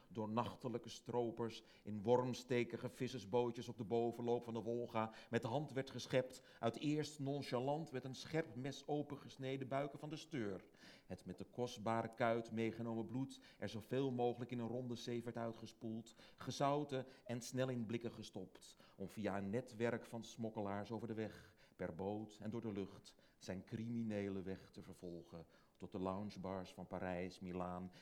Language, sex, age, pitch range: Dutch, male, 40-59, 105-125 Hz